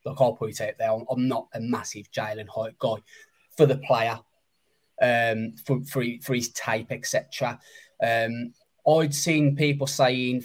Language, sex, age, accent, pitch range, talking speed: English, male, 20-39, British, 120-145 Hz, 160 wpm